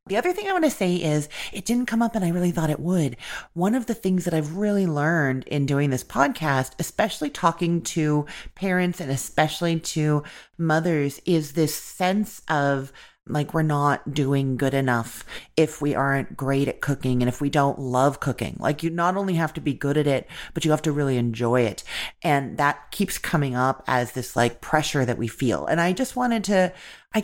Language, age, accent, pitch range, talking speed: English, 30-49, American, 140-175 Hz, 210 wpm